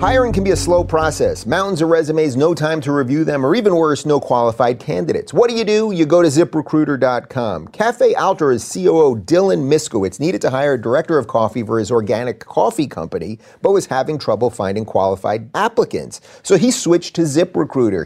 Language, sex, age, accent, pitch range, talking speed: English, male, 30-49, American, 135-175 Hz, 195 wpm